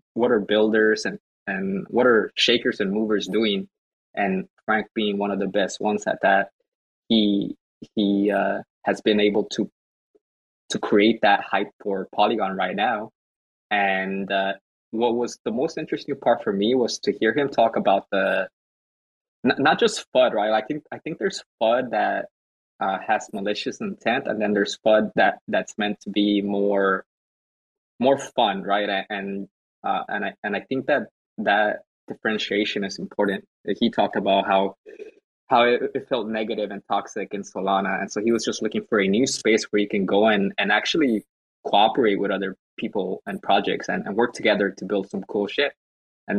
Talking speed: 180 wpm